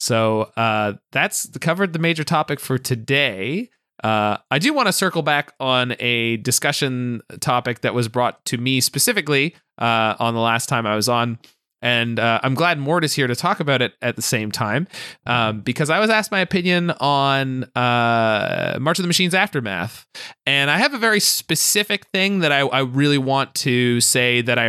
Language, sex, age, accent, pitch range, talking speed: English, male, 20-39, American, 115-150 Hz, 190 wpm